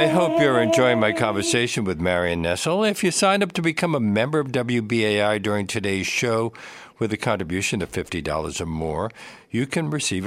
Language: English